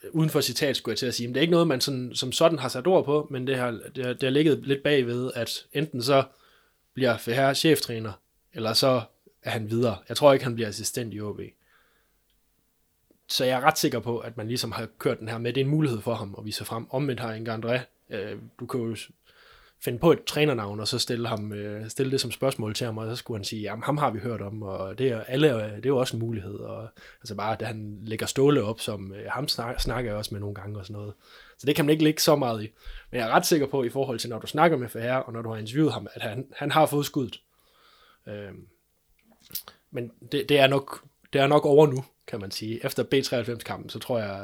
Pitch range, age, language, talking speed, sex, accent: 110-135 Hz, 20-39, Danish, 255 wpm, male, native